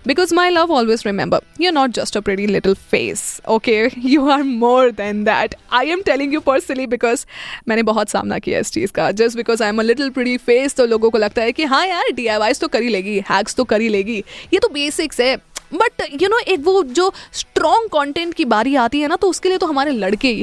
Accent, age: native, 20-39